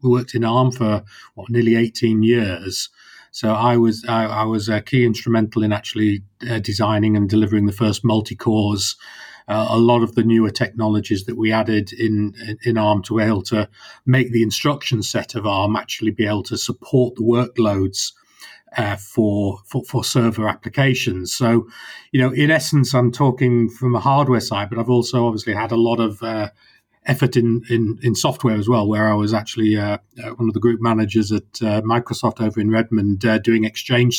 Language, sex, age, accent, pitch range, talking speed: English, male, 40-59, British, 110-120 Hz, 195 wpm